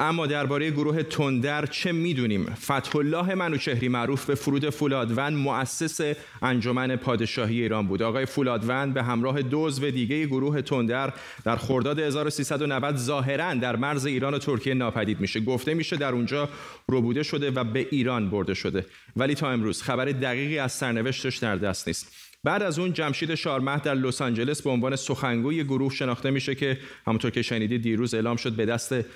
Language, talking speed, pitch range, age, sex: Persian, 170 wpm, 120-140 Hz, 30-49, male